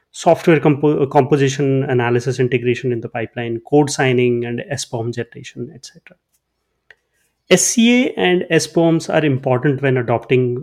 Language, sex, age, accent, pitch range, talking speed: English, male, 30-49, Indian, 125-155 Hz, 120 wpm